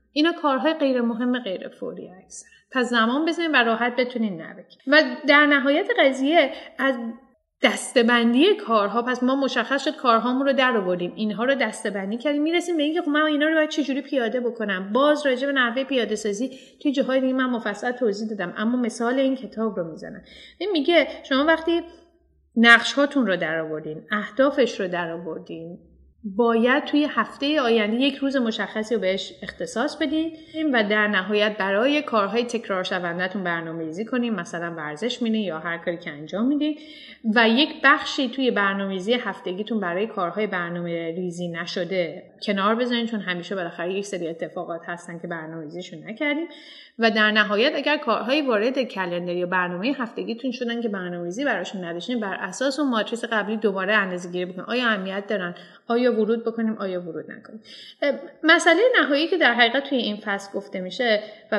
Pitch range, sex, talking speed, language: 195-270 Hz, female, 160 wpm, Persian